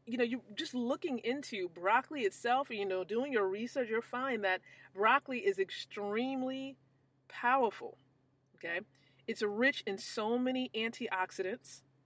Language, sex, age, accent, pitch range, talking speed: English, female, 30-49, American, 185-255 Hz, 135 wpm